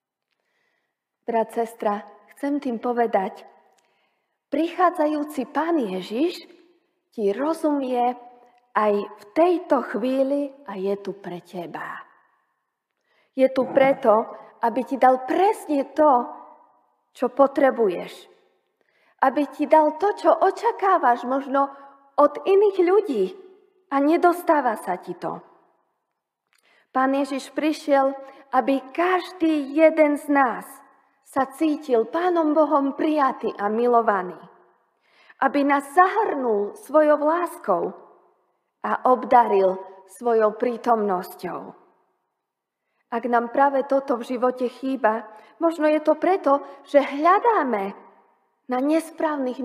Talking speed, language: 100 wpm, Slovak